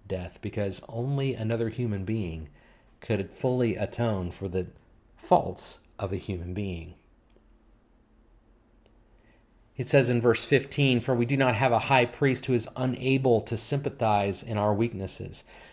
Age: 30-49